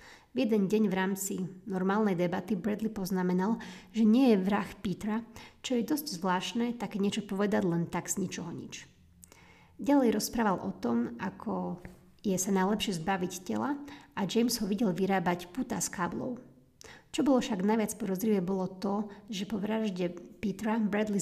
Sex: female